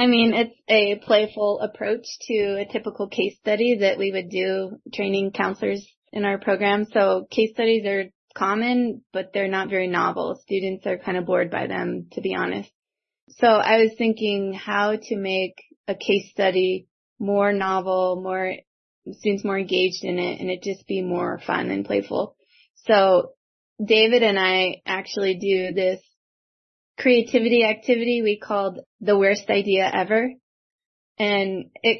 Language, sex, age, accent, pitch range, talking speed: English, female, 20-39, American, 190-235 Hz, 155 wpm